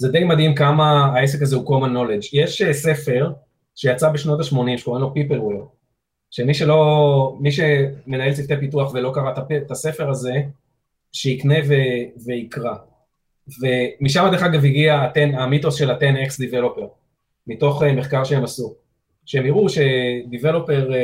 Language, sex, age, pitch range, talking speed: Hebrew, male, 30-49, 130-155 Hz, 130 wpm